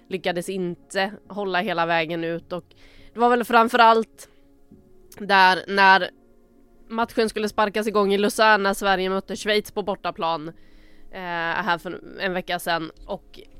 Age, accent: 20-39, Swedish